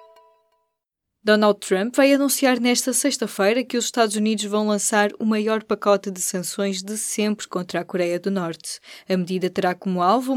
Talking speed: 170 wpm